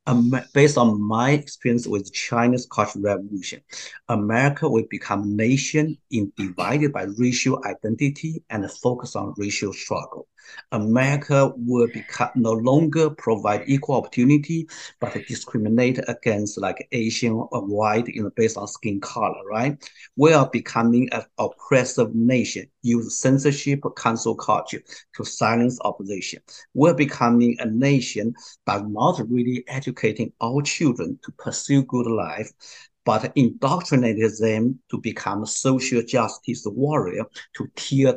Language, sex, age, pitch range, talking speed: English, male, 50-69, 110-140 Hz, 135 wpm